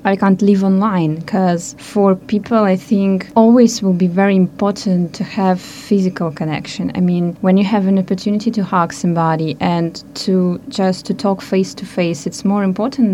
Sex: female